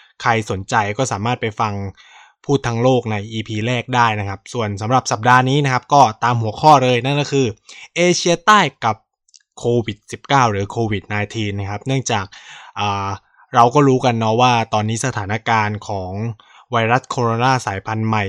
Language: Thai